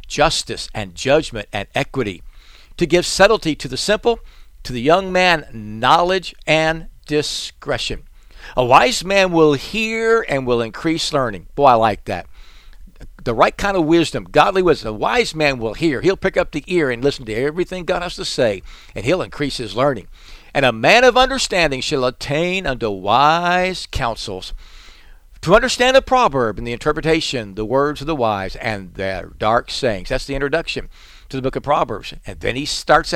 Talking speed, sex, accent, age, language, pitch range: 180 wpm, male, American, 60-79, English, 110-180 Hz